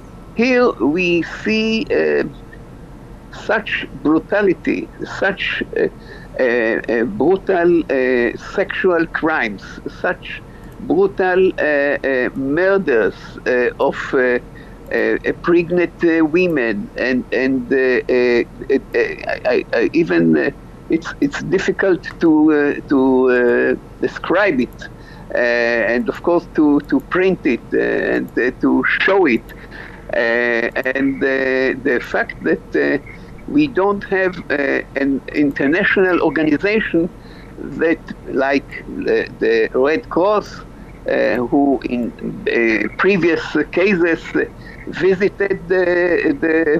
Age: 60-79